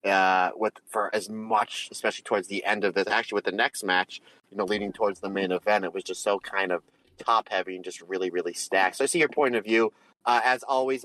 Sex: male